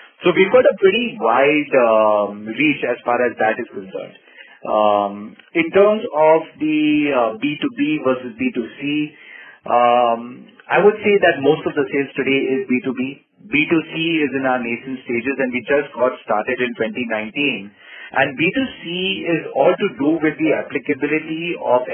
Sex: male